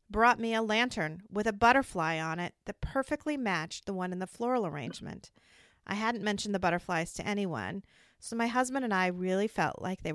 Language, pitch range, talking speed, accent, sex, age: English, 175-230 Hz, 200 wpm, American, female, 40-59